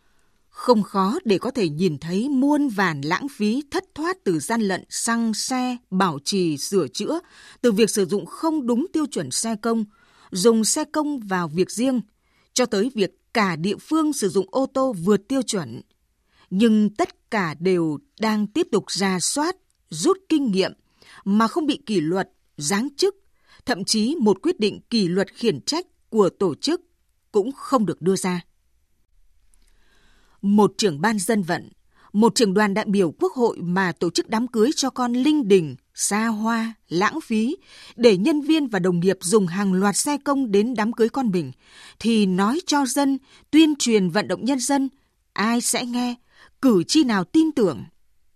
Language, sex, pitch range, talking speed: Vietnamese, female, 190-265 Hz, 180 wpm